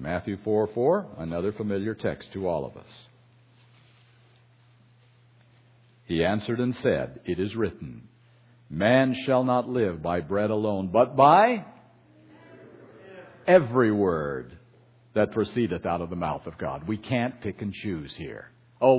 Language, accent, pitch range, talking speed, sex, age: English, American, 115-150 Hz, 135 wpm, male, 60-79